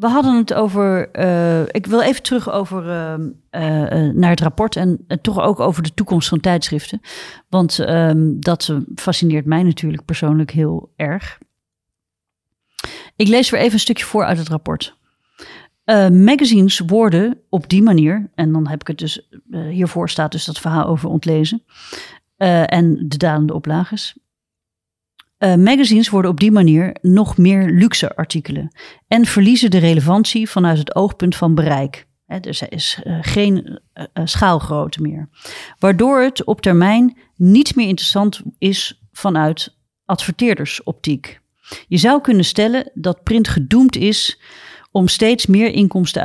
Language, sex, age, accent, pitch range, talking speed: Dutch, female, 40-59, Dutch, 160-215 Hz, 150 wpm